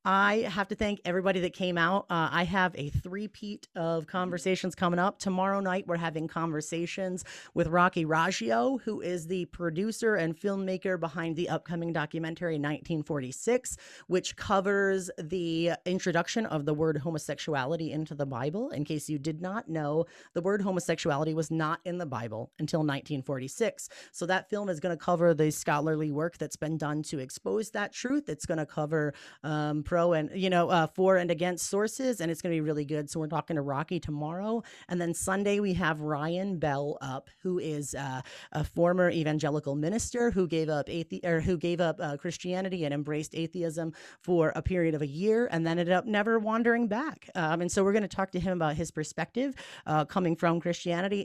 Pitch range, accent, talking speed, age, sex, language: 155-185 Hz, American, 190 wpm, 30-49, female, English